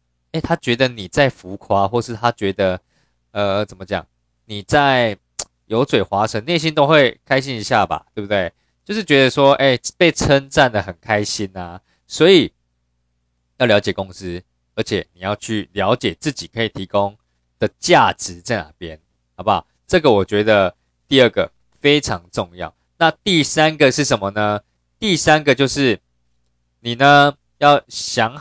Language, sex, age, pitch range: Chinese, male, 20-39, 85-135 Hz